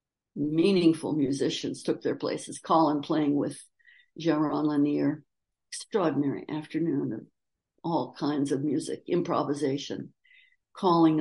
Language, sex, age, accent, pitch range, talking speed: English, female, 60-79, American, 150-195 Hz, 100 wpm